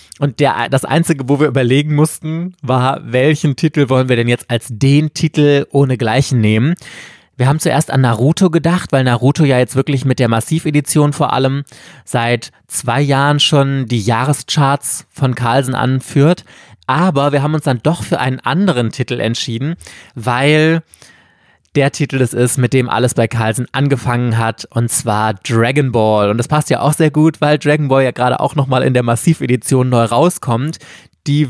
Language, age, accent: German, 20-39, German